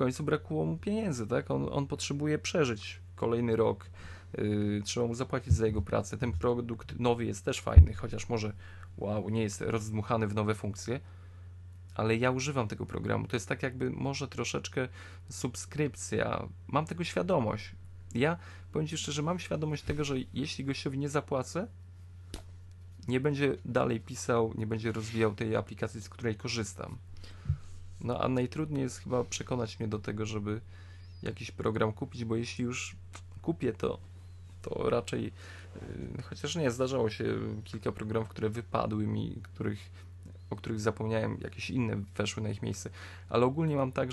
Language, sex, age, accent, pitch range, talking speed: Polish, male, 20-39, native, 90-125 Hz, 155 wpm